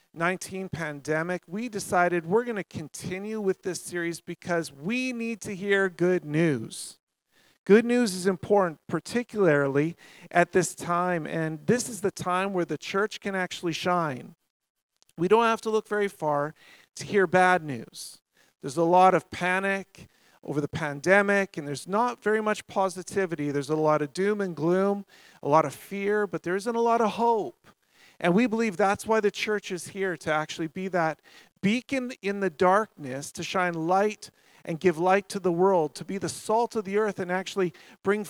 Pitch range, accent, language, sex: 165-210 Hz, American, English, male